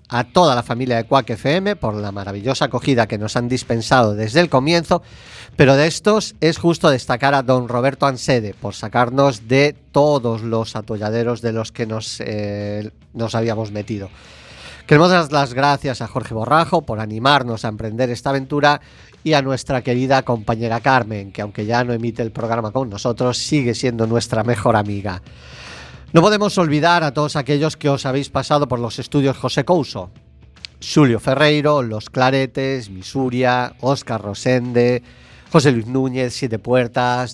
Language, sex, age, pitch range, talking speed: Spanish, male, 40-59, 115-140 Hz, 165 wpm